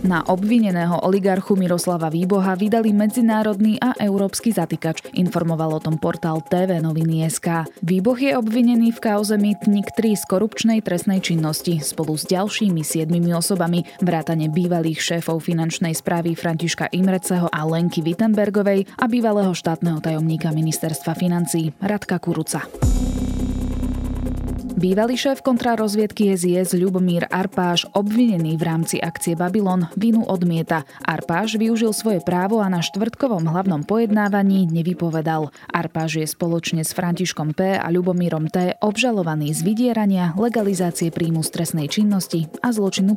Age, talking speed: 20-39, 130 wpm